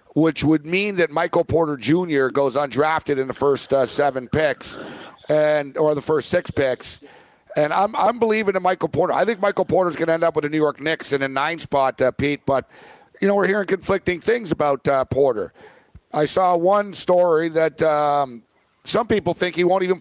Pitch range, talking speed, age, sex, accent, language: 145-185 Hz, 205 wpm, 50-69, male, American, English